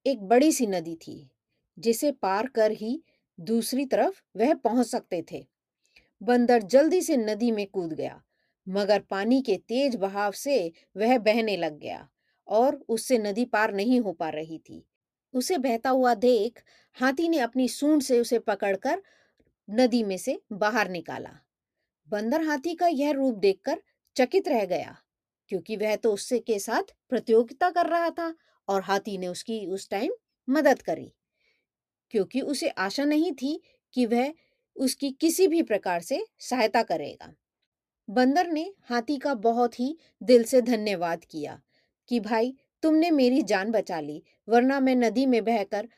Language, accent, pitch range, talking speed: Hindi, native, 210-285 Hz, 115 wpm